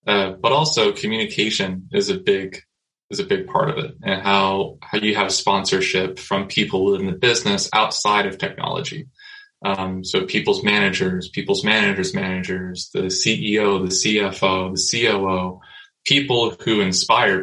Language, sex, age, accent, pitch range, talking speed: English, male, 20-39, American, 95-150 Hz, 150 wpm